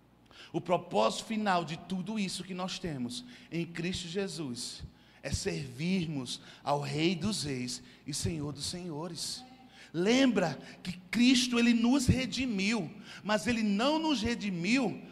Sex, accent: male, Brazilian